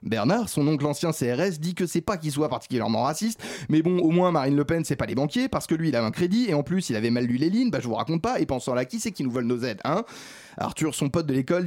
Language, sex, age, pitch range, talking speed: French, male, 30-49, 130-170 Hz, 315 wpm